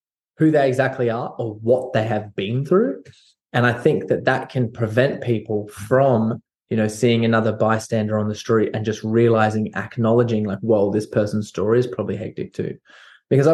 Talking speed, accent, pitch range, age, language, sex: 180 wpm, Australian, 115-140 Hz, 20-39, English, male